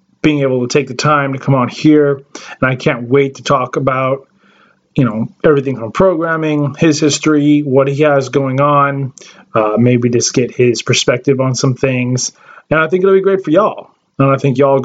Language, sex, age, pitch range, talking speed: English, male, 20-39, 135-170 Hz, 205 wpm